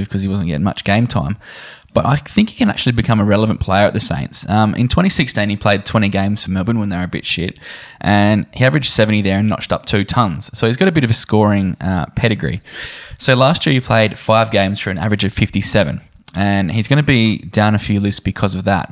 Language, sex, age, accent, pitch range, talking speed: English, male, 10-29, Australian, 95-115 Hz, 250 wpm